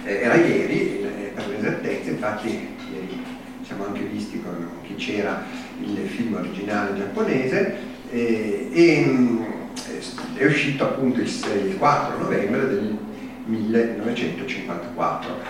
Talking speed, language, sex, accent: 100 wpm, Italian, male, native